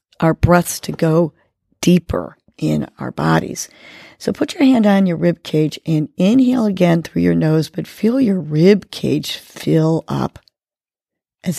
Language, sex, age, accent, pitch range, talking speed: English, female, 40-59, American, 155-200 Hz, 155 wpm